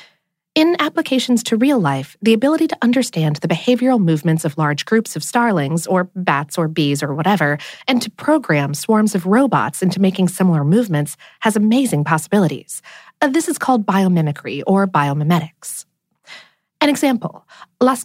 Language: English